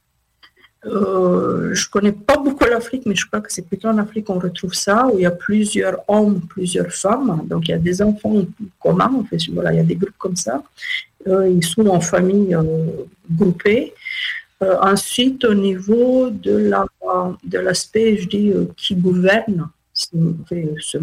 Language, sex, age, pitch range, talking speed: French, female, 50-69, 180-225 Hz, 190 wpm